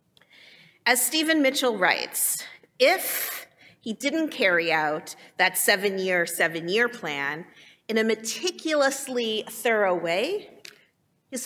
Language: English